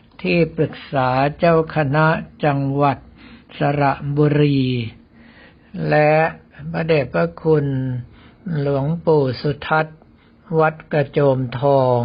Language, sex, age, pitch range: Thai, male, 60-79, 135-160 Hz